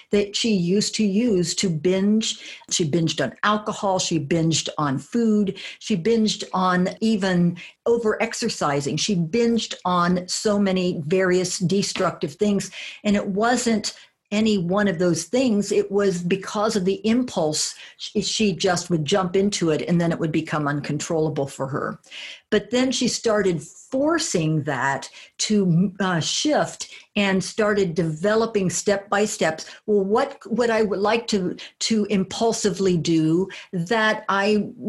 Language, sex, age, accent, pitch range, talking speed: English, female, 50-69, American, 180-215 Hz, 145 wpm